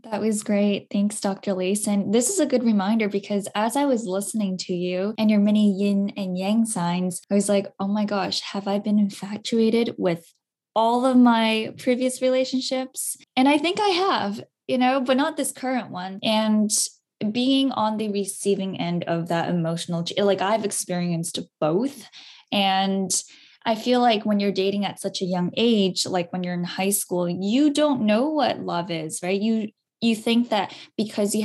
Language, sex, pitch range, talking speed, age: English, female, 190-235 Hz, 185 wpm, 10-29